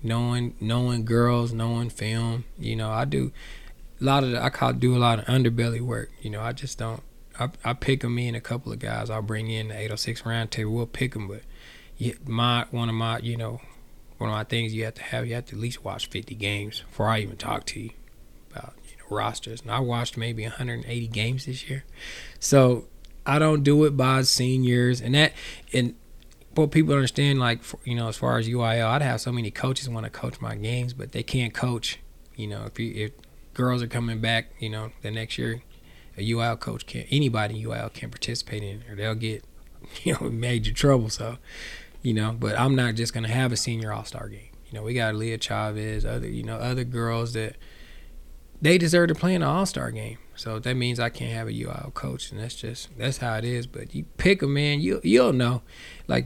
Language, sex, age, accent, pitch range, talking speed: English, male, 20-39, American, 110-125 Hz, 230 wpm